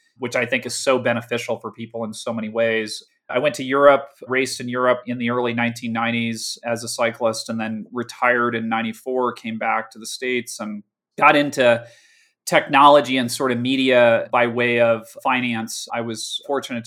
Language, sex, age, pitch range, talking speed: English, male, 30-49, 115-130 Hz, 180 wpm